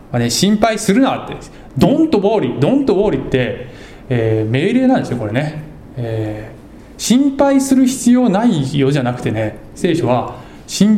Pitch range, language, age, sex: 115-195 Hz, Japanese, 20-39, male